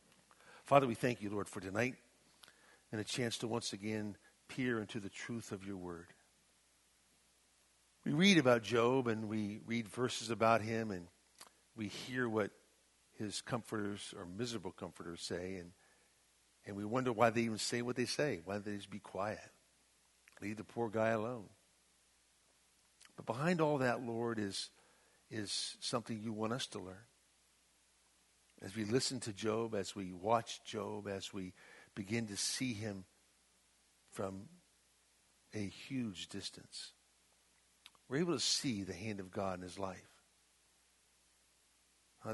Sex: male